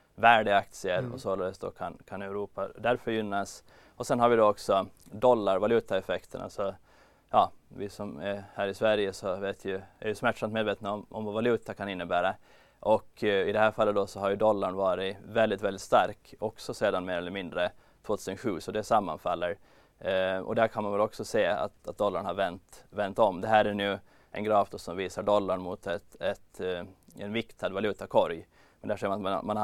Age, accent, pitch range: 20-39, native, 95-110 Hz